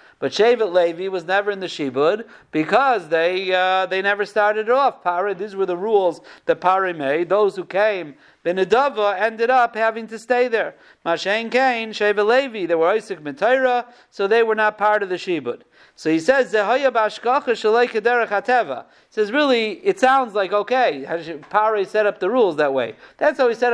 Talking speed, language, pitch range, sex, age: 180 wpm, English, 190-245 Hz, male, 50-69